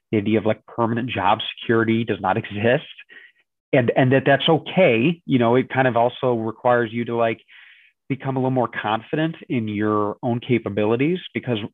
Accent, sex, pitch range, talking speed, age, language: American, male, 105-125 Hz, 180 wpm, 30-49, English